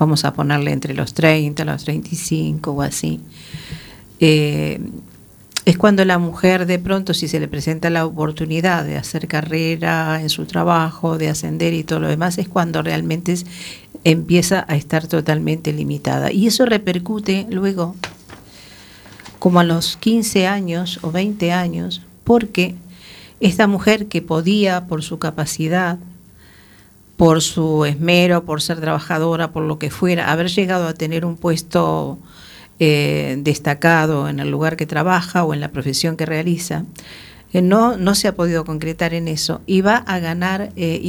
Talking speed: 155 wpm